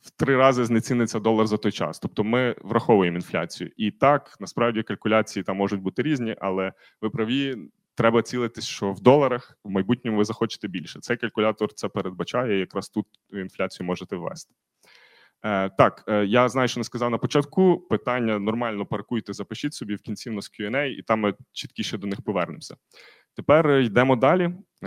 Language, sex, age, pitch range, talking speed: Ukrainian, male, 20-39, 105-125 Hz, 170 wpm